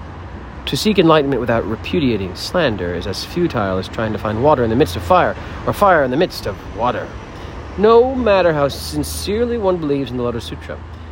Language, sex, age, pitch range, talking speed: English, male, 40-59, 85-125 Hz, 195 wpm